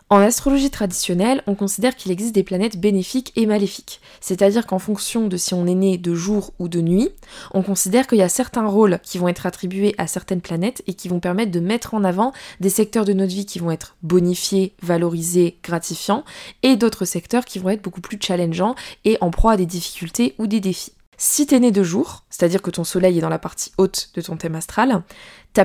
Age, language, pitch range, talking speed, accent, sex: 20-39, French, 180-220 Hz, 225 wpm, French, female